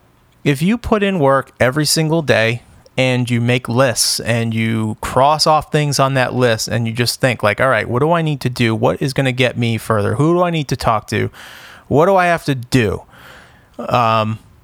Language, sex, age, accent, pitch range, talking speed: English, male, 30-49, American, 115-160 Hz, 220 wpm